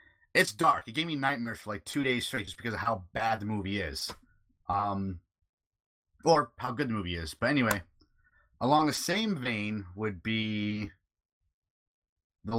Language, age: English, 30-49